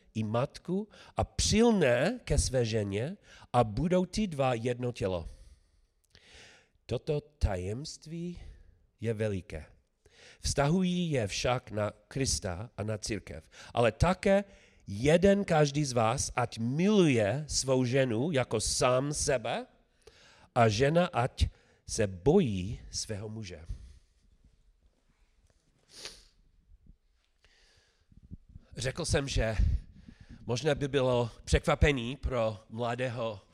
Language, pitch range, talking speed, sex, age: Czech, 95-135 Hz, 95 wpm, male, 40-59